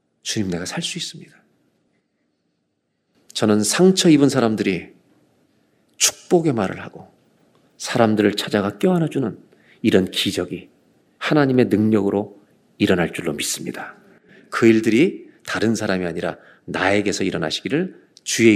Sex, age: male, 40-59